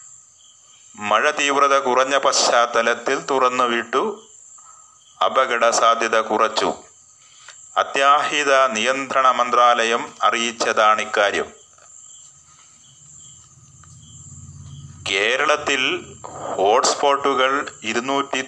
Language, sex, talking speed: Malayalam, male, 55 wpm